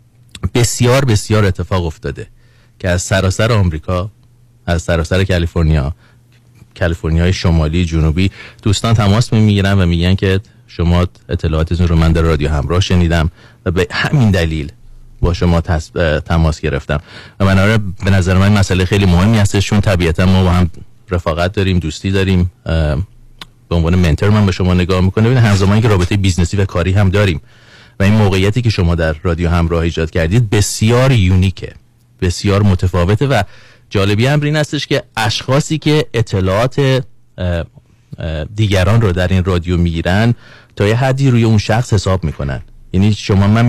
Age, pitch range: 30-49, 85-110 Hz